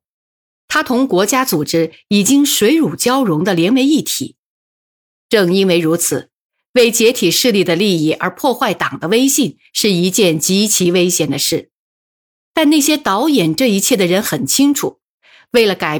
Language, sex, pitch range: Chinese, female, 170-260 Hz